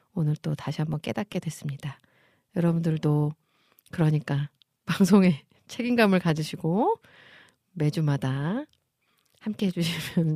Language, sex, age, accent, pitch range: Korean, female, 40-59, native, 155-200 Hz